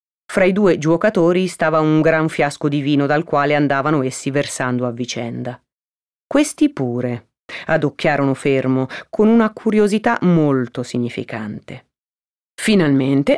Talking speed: 120 wpm